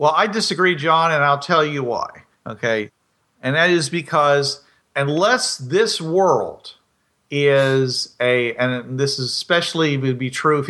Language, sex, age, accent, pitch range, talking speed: English, male, 50-69, American, 130-160 Hz, 150 wpm